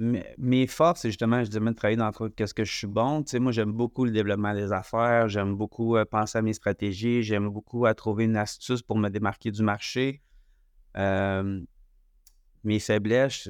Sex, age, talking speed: male, 30-49, 190 wpm